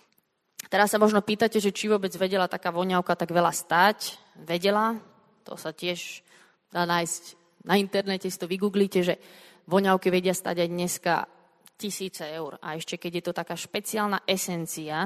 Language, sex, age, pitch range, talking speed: Slovak, female, 20-39, 170-205 Hz, 160 wpm